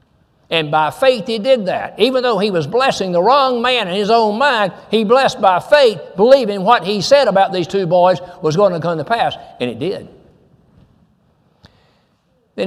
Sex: male